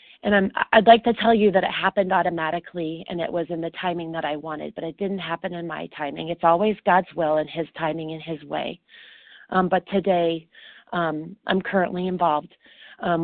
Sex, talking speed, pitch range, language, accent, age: female, 200 wpm, 170-210 Hz, English, American, 40-59